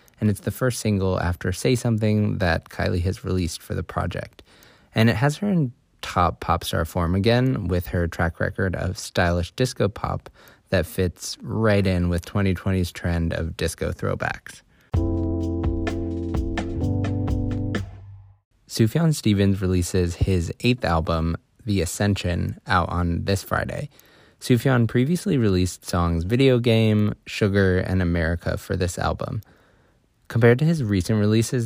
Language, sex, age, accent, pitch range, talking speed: English, male, 20-39, American, 90-110 Hz, 135 wpm